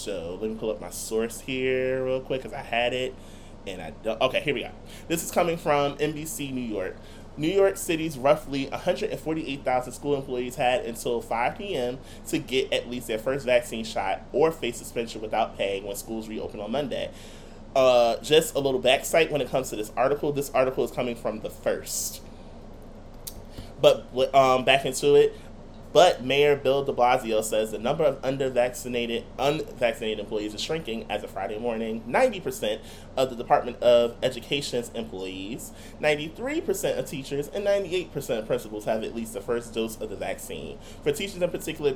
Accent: American